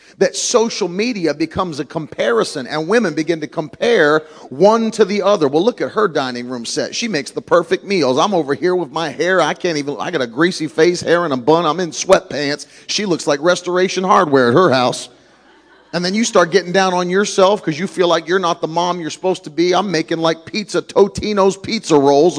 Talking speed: 220 wpm